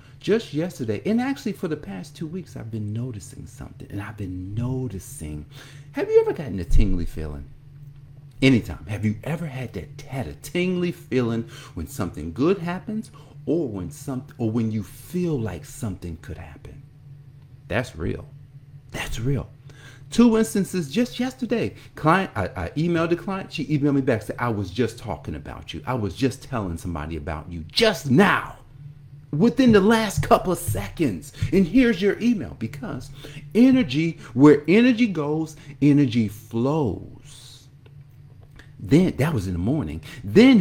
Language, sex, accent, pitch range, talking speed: English, male, American, 110-165 Hz, 160 wpm